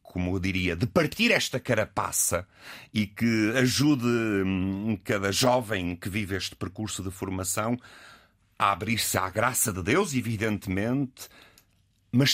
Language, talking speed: Portuguese, 125 wpm